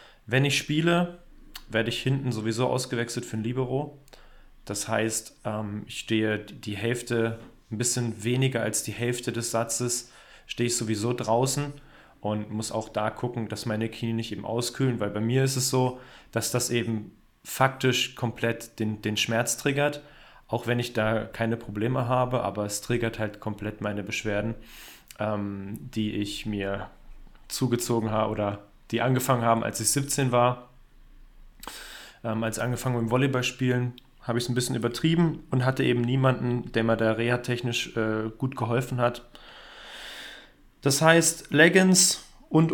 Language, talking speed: German, 155 wpm